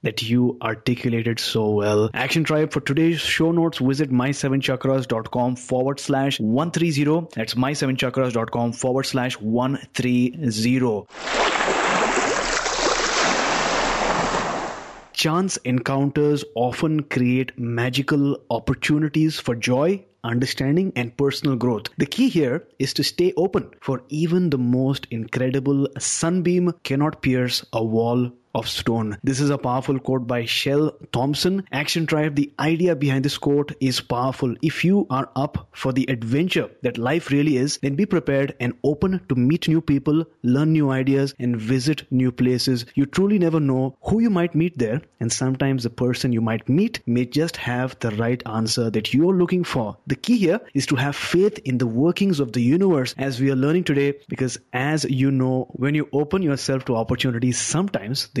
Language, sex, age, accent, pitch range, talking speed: English, male, 20-39, Indian, 125-155 Hz, 155 wpm